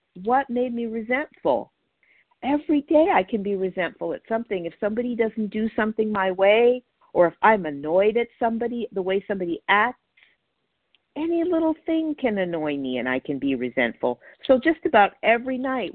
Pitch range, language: 185-270 Hz, English